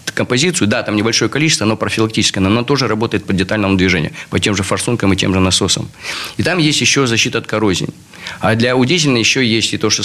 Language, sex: Russian, male